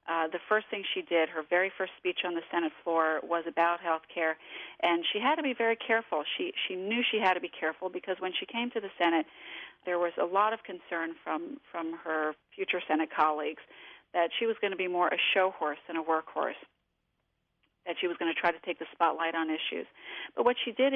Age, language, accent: 40-59, English, American